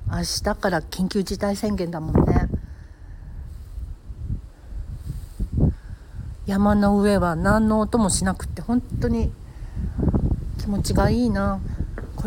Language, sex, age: Japanese, female, 60-79